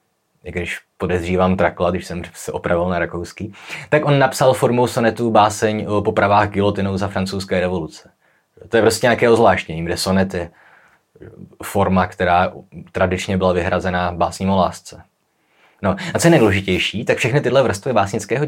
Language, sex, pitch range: Czech, male, 90-115 Hz